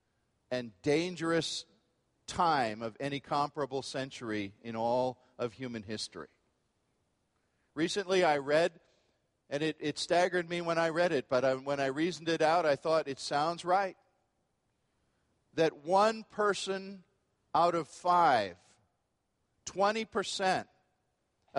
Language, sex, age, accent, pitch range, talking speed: English, male, 50-69, American, 130-170 Hz, 115 wpm